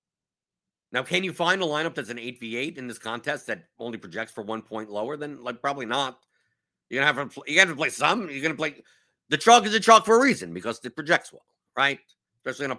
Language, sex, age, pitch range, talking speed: English, male, 50-69, 120-175 Hz, 235 wpm